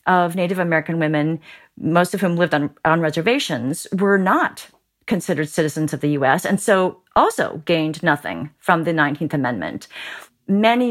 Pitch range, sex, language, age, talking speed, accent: 155-200 Hz, female, English, 40-59, 155 wpm, American